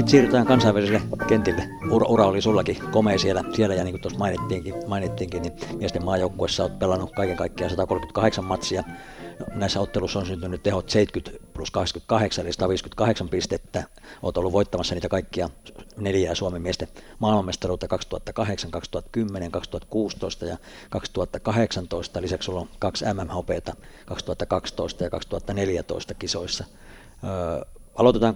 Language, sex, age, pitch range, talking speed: Finnish, male, 60-79, 90-105 Hz, 125 wpm